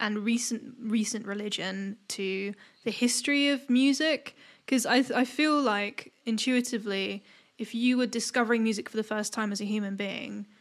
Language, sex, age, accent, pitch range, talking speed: English, female, 10-29, British, 210-240 Hz, 165 wpm